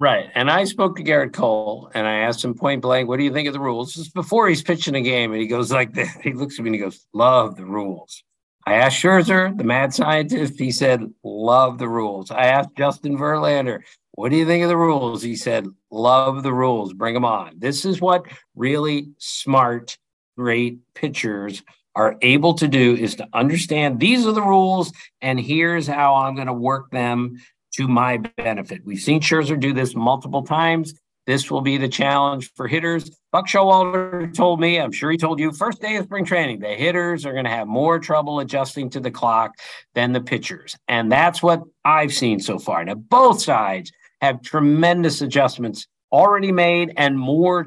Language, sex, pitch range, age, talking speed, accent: English, male, 125-170 Hz, 50-69, 200 wpm, American